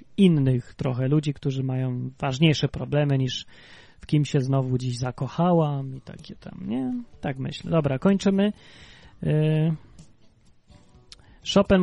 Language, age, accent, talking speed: Polish, 30-49, native, 115 wpm